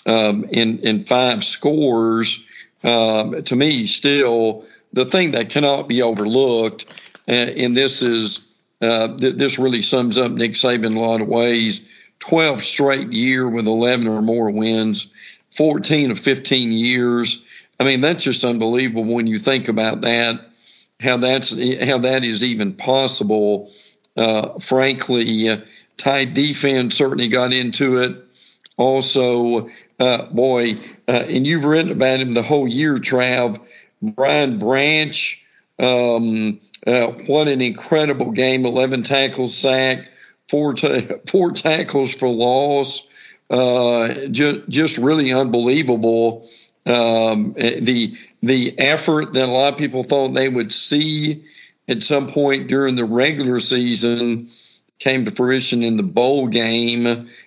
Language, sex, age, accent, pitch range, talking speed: English, male, 50-69, American, 115-135 Hz, 135 wpm